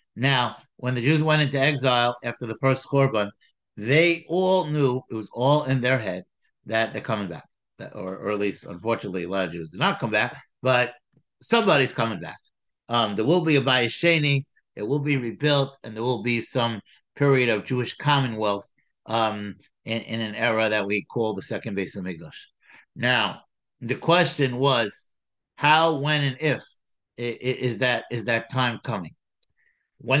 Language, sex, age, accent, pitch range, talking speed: English, male, 60-79, American, 115-160 Hz, 170 wpm